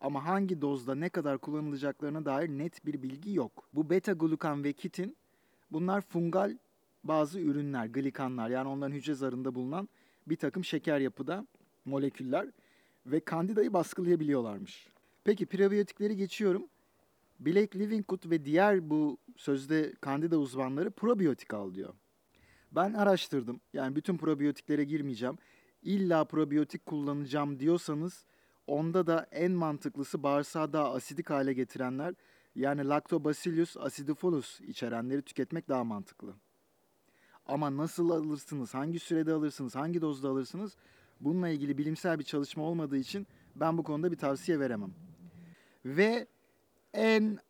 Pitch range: 140-180 Hz